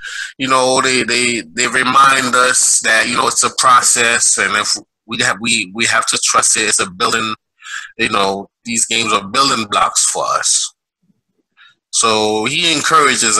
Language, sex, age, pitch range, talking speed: English, male, 20-39, 110-140 Hz, 170 wpm